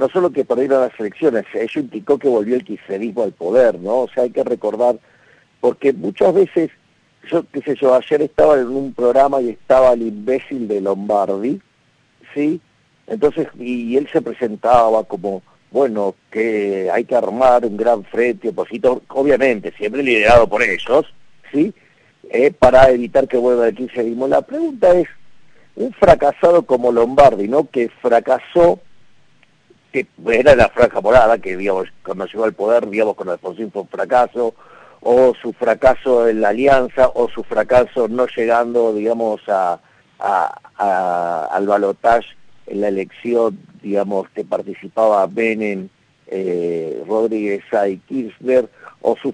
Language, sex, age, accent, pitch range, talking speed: Spanish, male, 50-69, Argentinian, 110-140 Hz, 150 wpm